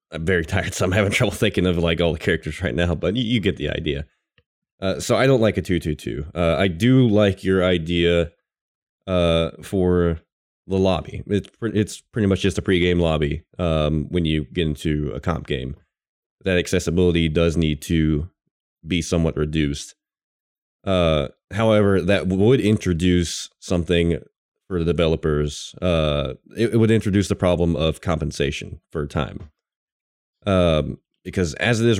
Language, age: English, 20-39